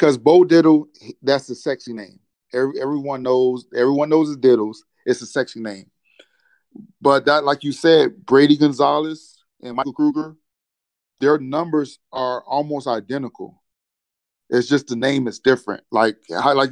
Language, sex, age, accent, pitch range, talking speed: English, male, 30-49, American, 120-150 Hz, 145 wpm